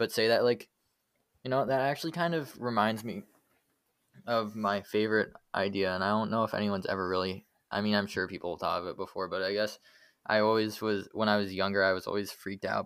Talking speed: 230 wpm